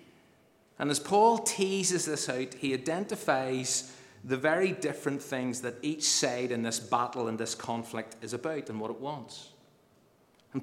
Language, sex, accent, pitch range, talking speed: English, male, British, 110-140 Hz, 160 wpm